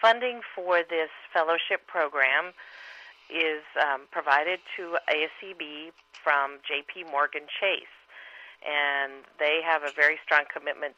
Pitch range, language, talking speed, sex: 140-170 Hz, English, 115 wpm, female